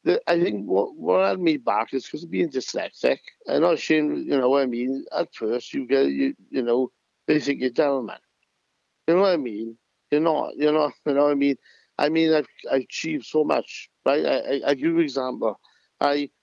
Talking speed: 235 wpm